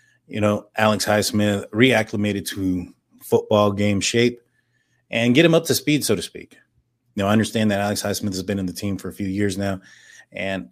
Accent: American